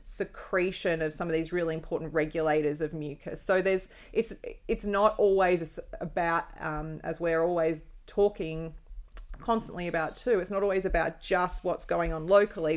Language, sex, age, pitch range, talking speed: English, female, 30-49, 160-190 Hz, 160 wpm